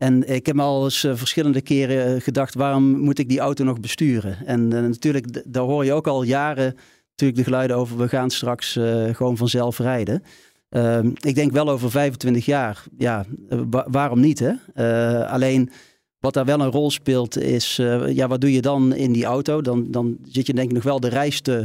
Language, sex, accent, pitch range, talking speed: Dutch, male, Dutch, 120-140 Hz, 215 wpm